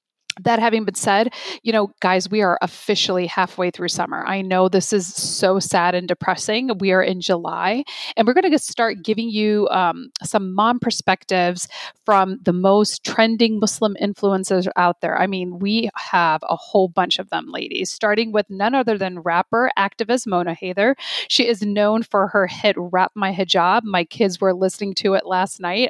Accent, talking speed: American, 185 wpm